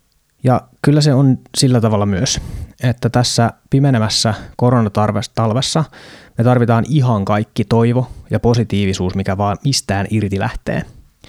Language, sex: Finnish, male